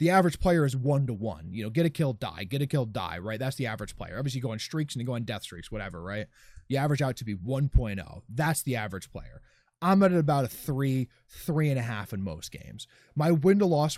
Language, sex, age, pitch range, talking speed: English, male, 20-39, 120-170 Hz, 240 wpm